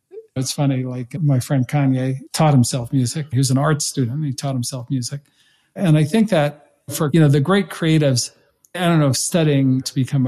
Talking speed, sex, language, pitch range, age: 205 wpm, male, English, 130-155 Hz, 50-69